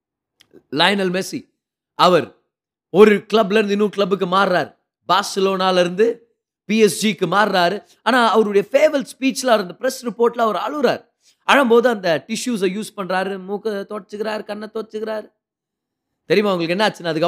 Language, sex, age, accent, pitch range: Tamil, male, 30-49, native, 170-235 Hz